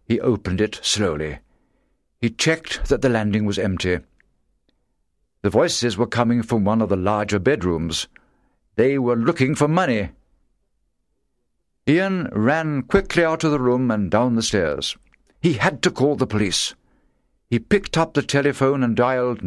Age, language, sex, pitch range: 60-79, Chinese, male, 90-140 Hz